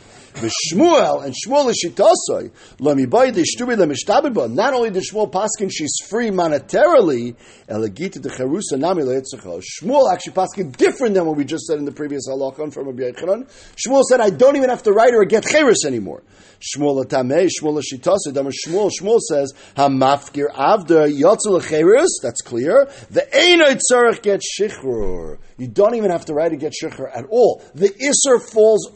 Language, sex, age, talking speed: English, male, 50-69, 120 wpm